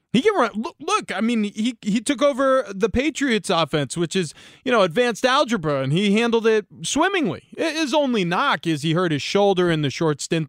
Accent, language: American, English